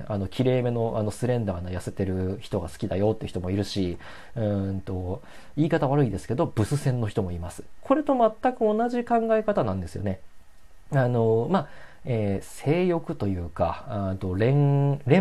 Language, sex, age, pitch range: Japanese, male, 40-59, 95-145 Hz